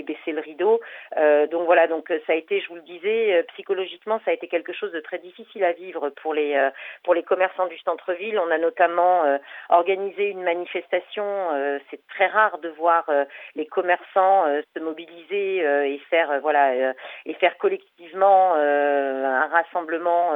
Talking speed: 190 wpm